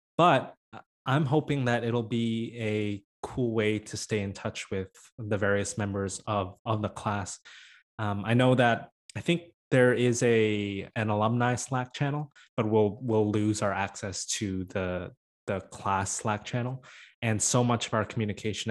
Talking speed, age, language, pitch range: 165 wpm, 20-39, English, 100-115 Hz